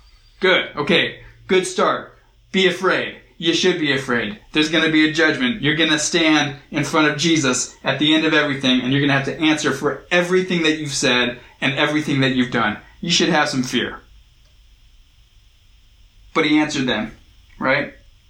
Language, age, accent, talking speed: English, 20-39, American, 185 wpm